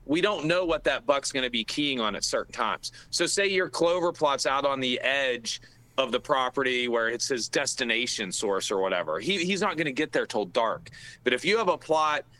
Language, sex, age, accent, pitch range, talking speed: English, male, 40-59, American, 130-170 Hz, 230 wpm